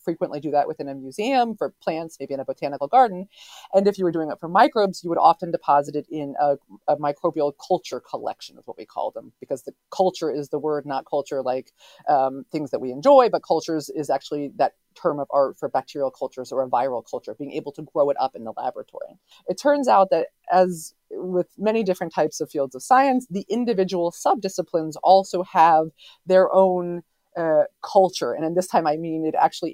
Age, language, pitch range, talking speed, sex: 40-59, English, 150-195 Hz, 210 wpm, female